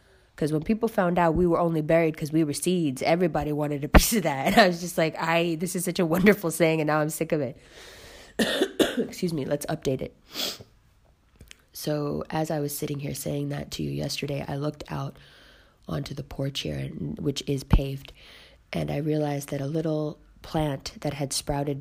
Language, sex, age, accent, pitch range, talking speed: English, female, 20-39, American, 135-155 Hz, 200 wpm